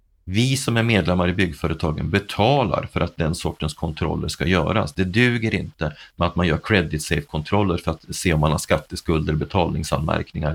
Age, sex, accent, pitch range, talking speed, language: 30-49, male, native, 80-105 Hz, 180 wpm, Swedish